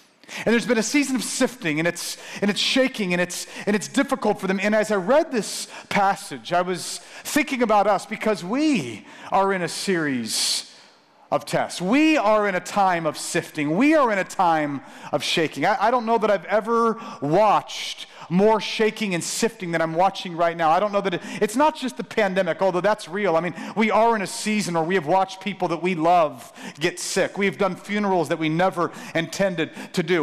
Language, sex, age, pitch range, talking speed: English, male, 40-59, 175-220 Hz, 215 wpm